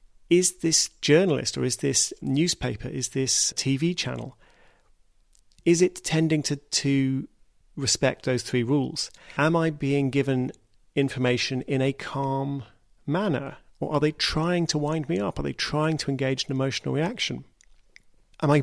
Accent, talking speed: British, 150 wpm